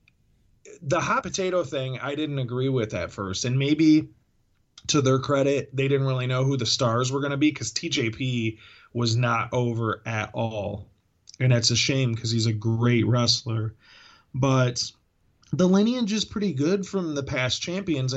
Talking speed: 170 wpm